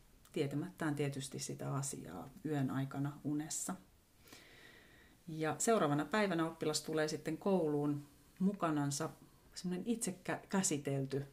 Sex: female